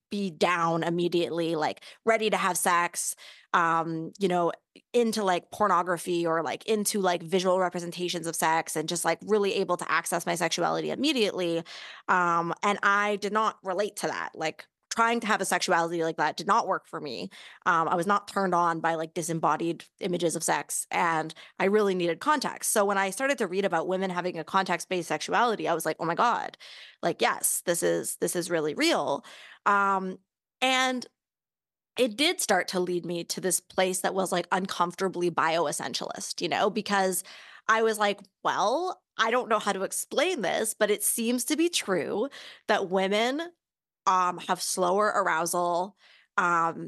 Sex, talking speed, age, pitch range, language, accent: female, 180 wpm, 20-39, 175-210 Hz, English, American